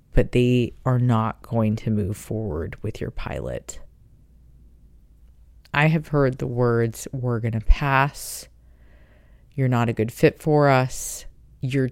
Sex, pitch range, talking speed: female, 115-145 Hz, 140 wpm